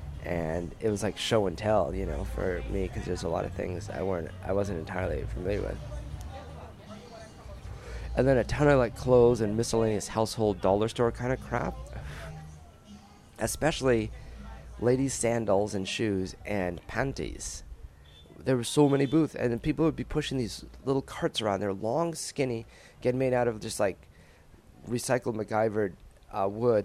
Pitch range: 95-120 Hz